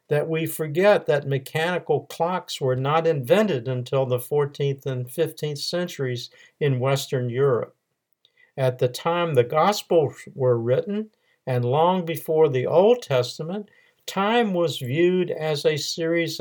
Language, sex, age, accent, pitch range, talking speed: English, male, 50-69, American, 130-180 Hz, 135 wpm